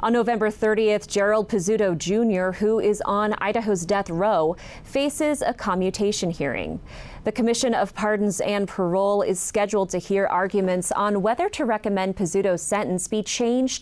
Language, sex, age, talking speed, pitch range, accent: English, female, 30-49, 150 wpm, 185-225 Hz, American